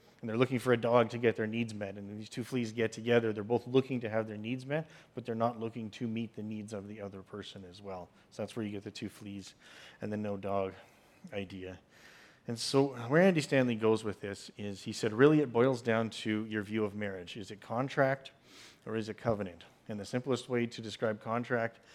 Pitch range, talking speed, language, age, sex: 105-120 Hz, 235 wpm, English, 30-49, male